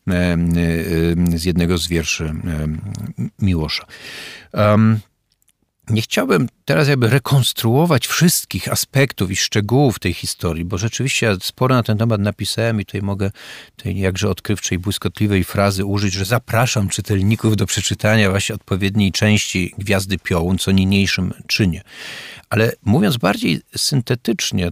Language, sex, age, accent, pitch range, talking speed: Polish, male, 50-69, native, 100-125 Hz, 120 wpm